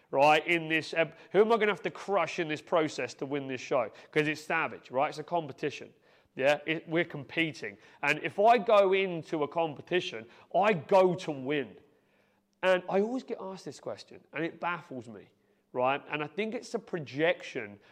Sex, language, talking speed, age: male, English, 190 wpm, 30-49